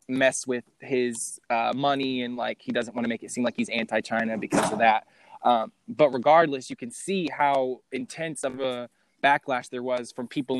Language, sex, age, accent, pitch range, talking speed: English, male, 20-39, American, 120-145 Hz, 200 wpm